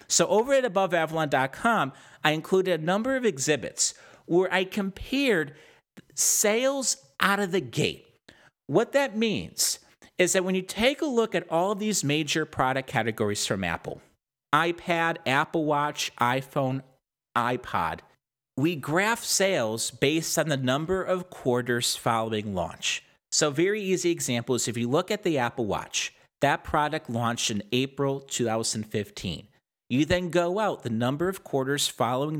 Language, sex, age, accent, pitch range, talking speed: English, male, 50-69, American, 120-180 Hz, 145 wpm